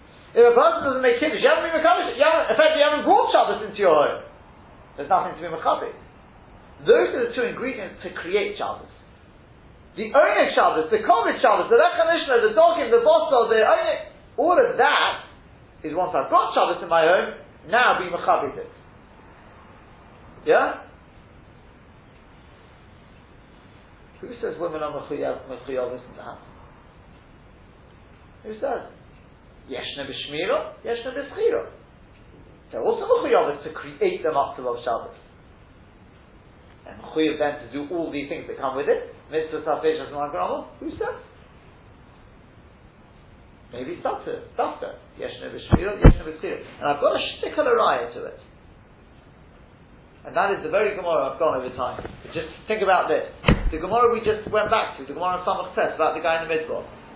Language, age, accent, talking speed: English, 40-59, British, 165 wpm